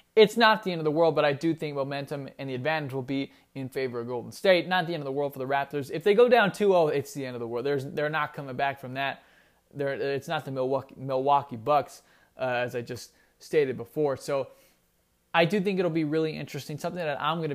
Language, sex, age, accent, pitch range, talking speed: English, male, 20-39, American, 130-155 Hz, 245 wpm